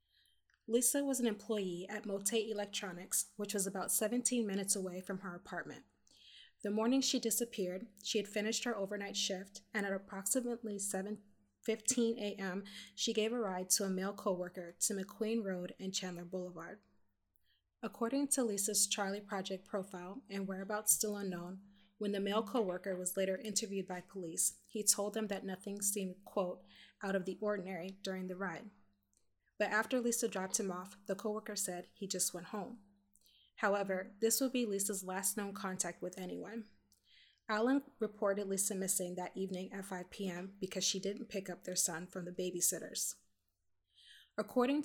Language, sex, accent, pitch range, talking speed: English, female, American, 185-215 Hz, 160 wpm